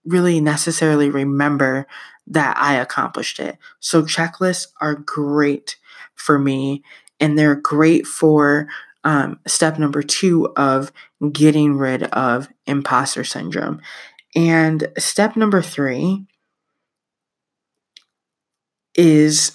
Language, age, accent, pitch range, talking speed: English, 20-39, American, 145-165 Hz, 100 wpm